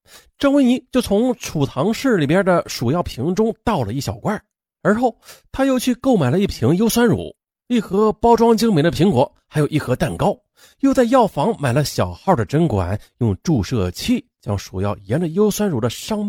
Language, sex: Chinese, male